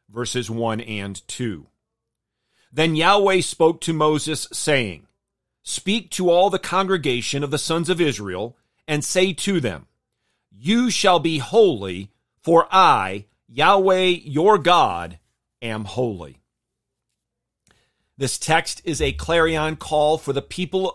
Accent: American